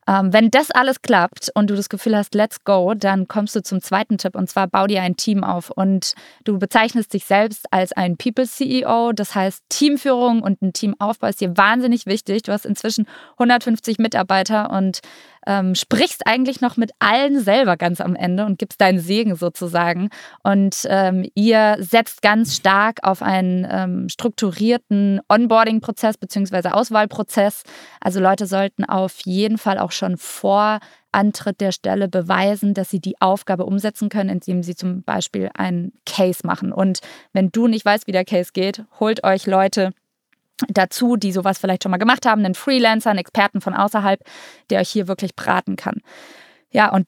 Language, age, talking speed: German, 20-39, 170 wpm